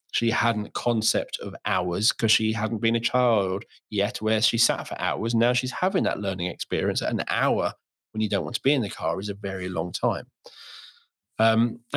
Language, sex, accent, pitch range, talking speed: English, male, British, 100-120 Hz, 210 wpm